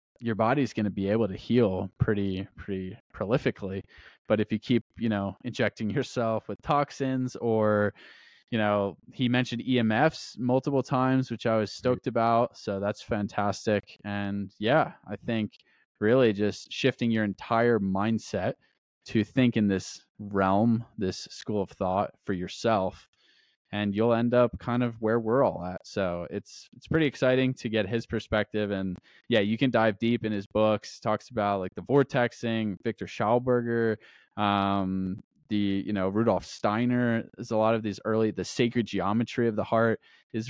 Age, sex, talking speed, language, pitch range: 20-39, male, 165 wpm, English, 105-120 Hz